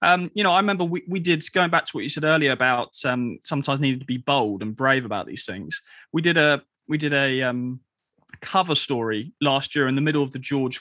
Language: English